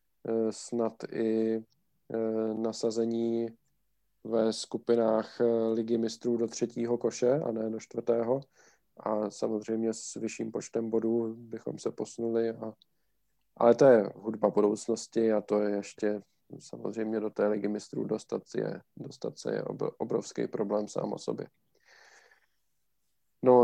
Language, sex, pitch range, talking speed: Czech, male, 110-120 Hz, 115 wpm